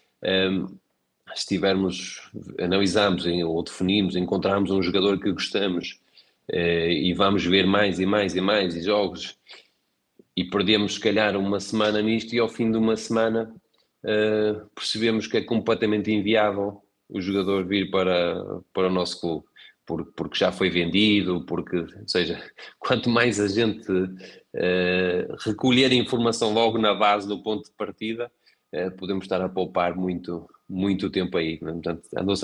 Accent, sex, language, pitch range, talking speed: Portuguese, male, Portuguese, 95-125 Hz, 135 wpm